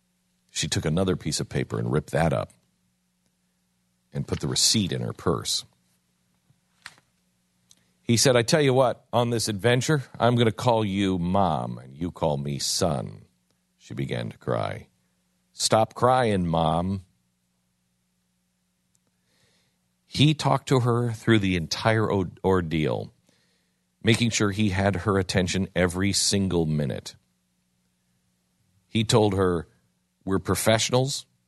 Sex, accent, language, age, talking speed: male, American, English, 50-69, 125 wpm